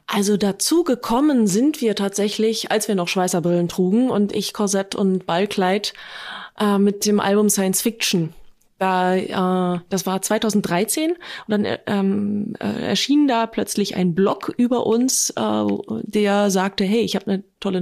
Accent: German